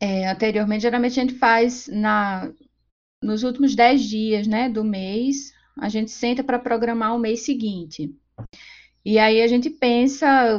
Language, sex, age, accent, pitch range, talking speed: Portuguese, female, 20-39, Brazilian, 200-240 Hz, 155 wpm